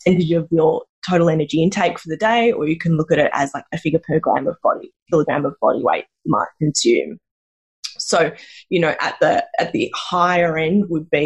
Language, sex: English, female